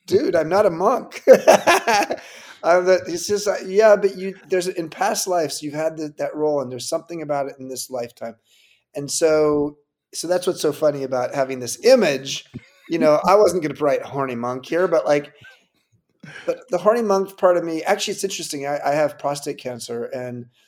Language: English